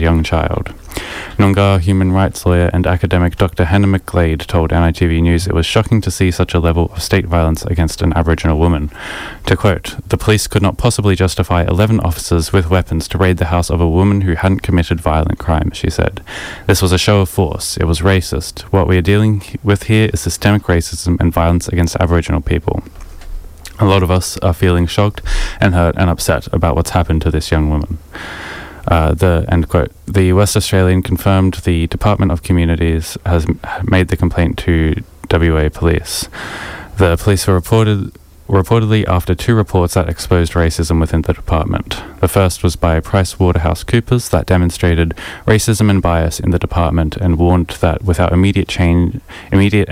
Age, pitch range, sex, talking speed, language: 20-39, 85-95 Hz, male, 180 wpm, English